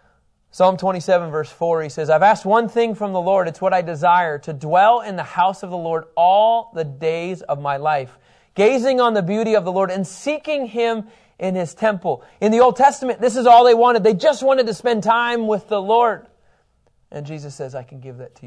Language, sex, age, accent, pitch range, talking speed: English, male, 30-49, American, 155-225 Hz, 225 wpm